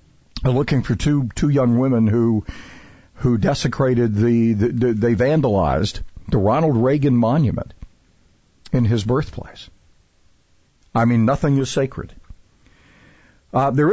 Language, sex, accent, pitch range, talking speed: English, male, American, 110-140 Hz, 120 wpm